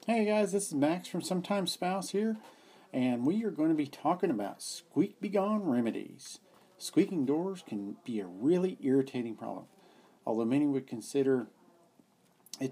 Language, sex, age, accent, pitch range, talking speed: English, male, 50-69, American, 110-155 Hz, 160 wpm